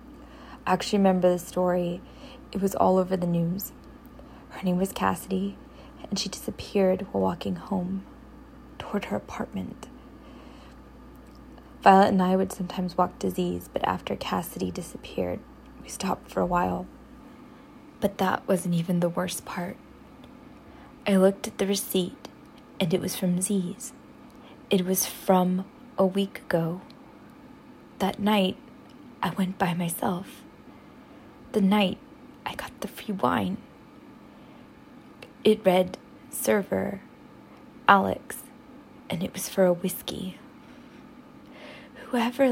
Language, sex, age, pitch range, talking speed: English, female, 20-39, 185-260 Hz, 125 wpm